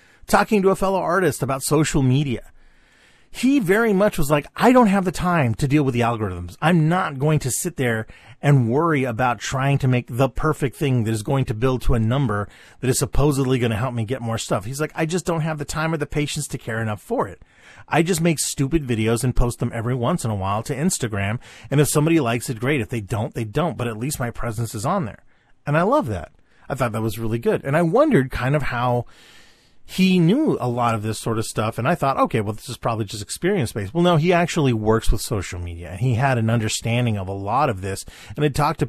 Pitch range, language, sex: 115-150 Hz, English, male